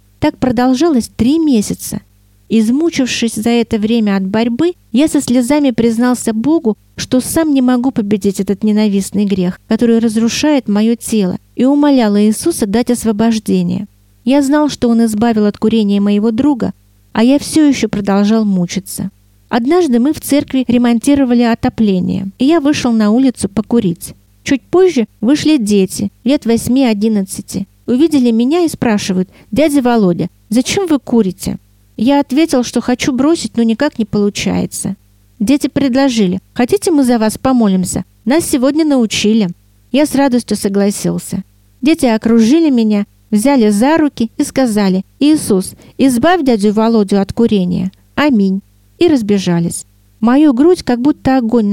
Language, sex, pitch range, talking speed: Russian, female, 200-270 Hz, 140 wpm